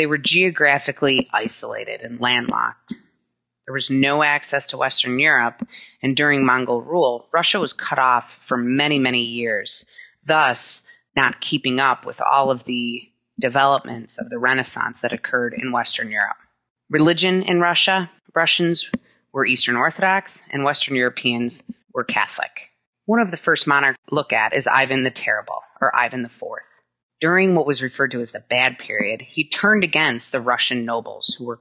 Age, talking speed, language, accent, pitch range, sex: 30-49, 165 wpm, English, American, 125-160 Hz, female